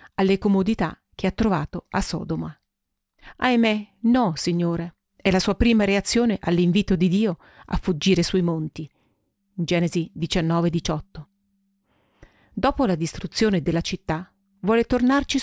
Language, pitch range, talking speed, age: Italian, 170-220 Hz, 120 wpm, 40-59